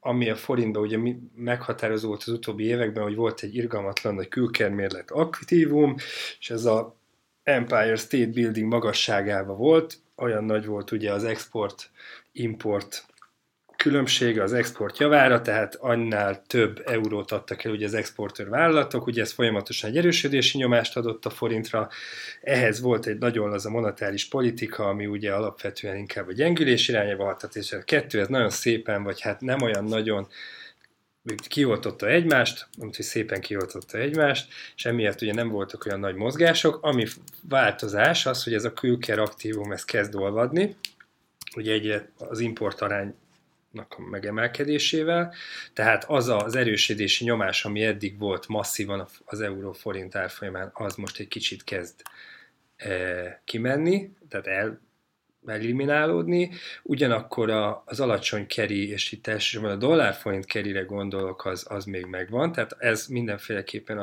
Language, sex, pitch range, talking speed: Hungarian, male, 100-120 Hz, 140 wpm